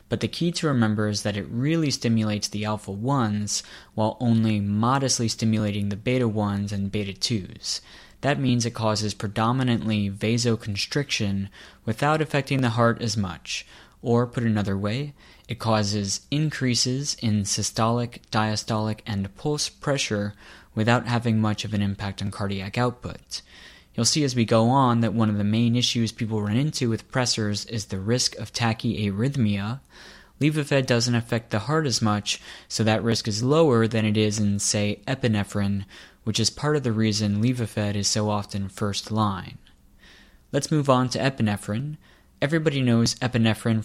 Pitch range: 105-120 Hz